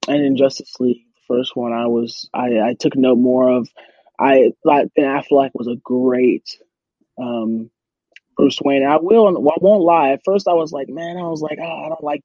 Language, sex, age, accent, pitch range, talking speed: English, male, 20-39, American, 125-160 Hz, 220 wpm